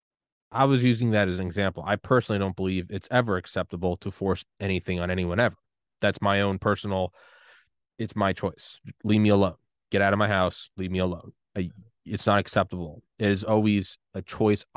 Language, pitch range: English, 95-110 Hz